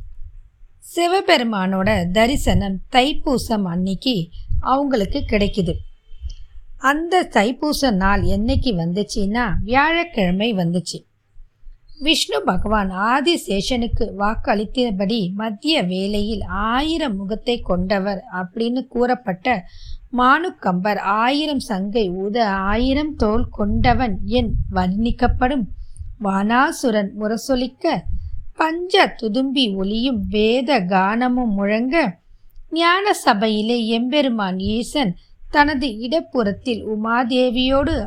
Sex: female